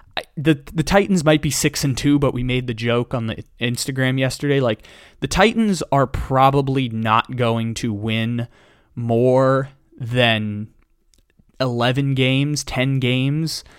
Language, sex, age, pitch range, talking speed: English, male, 20-39, 115-135 Hz, 145 wpm